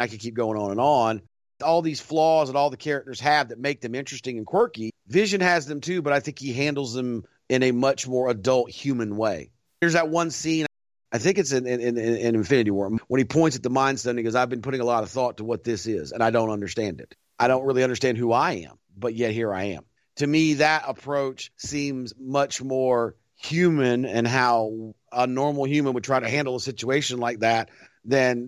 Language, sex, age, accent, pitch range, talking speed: English, male, 40-59, American, 120-160 Hz, 230 wpm